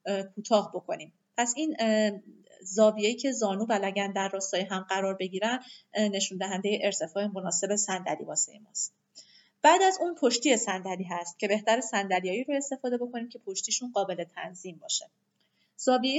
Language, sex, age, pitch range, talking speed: Persian, female, 30-49, 190-220 Hz, 140 wpm